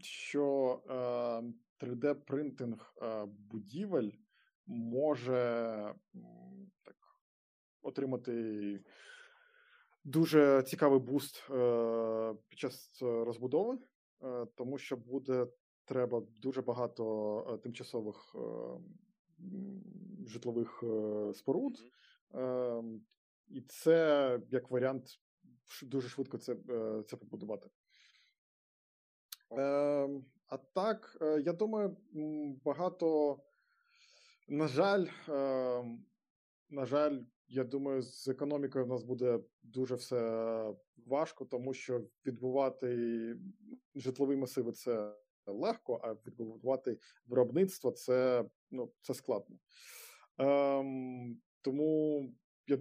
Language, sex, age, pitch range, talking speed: Ukrainian, male, 20-39, 120-155 Hz, 75 wpm